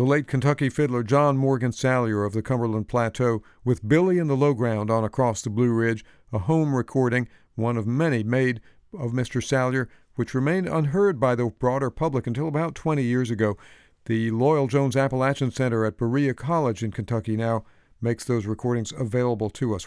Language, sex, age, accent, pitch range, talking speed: English, male, 50-69, American, 115-140 Hz, 185 wpm